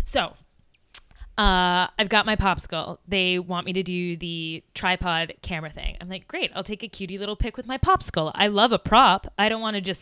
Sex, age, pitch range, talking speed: female, 20-39, 175-215 Hz, 215 wpm